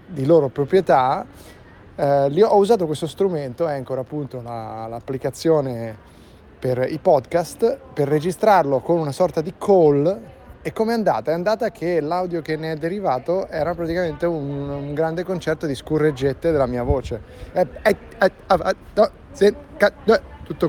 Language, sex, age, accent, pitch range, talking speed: Italian, male, 30-49, native, 135-185 Hz, 140 wpm